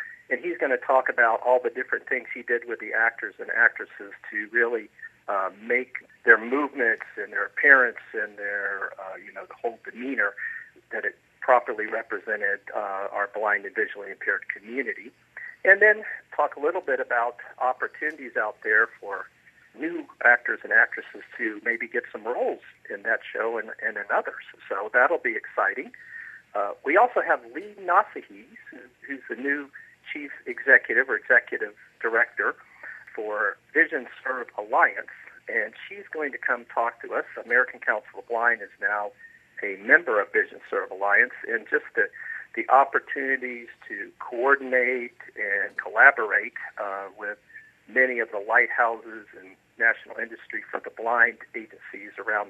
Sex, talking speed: male, 155 wpm